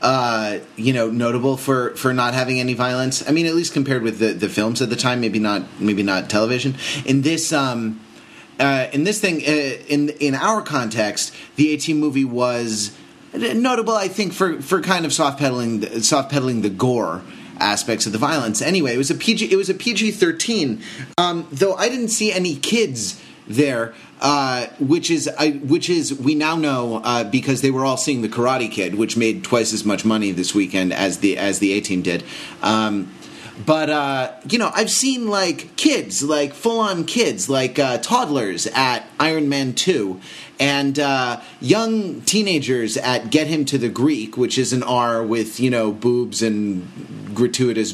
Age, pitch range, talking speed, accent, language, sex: 30-49, 110-155 Hz, 185 wpm, American, English, male